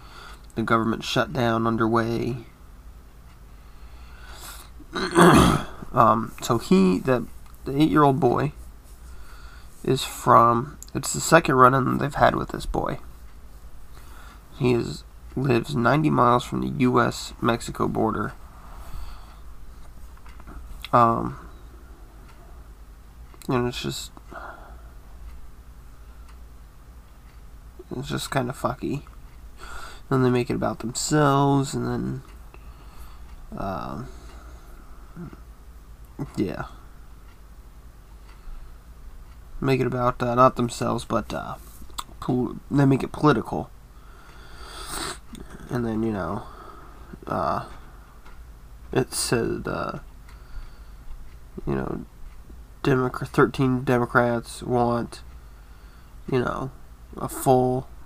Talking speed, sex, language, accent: 85 wpm, male, English, American